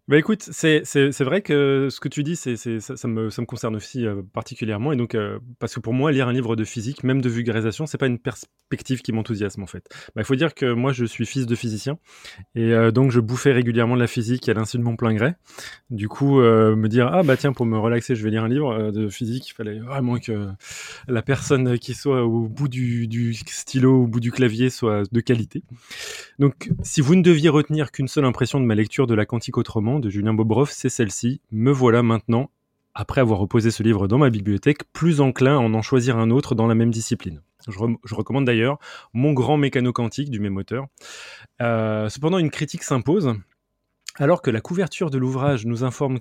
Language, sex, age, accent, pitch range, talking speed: French, male, 20-39, French, 115-140 Hz, 230 wpm